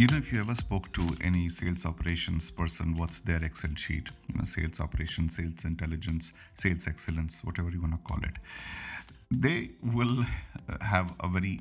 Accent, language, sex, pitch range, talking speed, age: Indian, English, male, 85-105 Hz, 170 wpm, 50-69